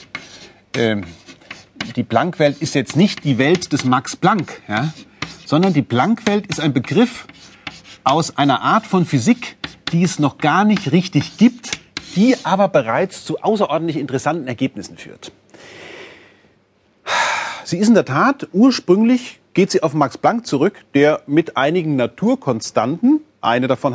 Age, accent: 40-59, German